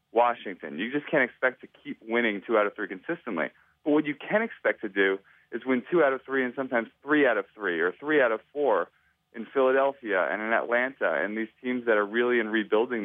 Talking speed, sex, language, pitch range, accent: 230 wpm, male, English, 95-120 Hz, American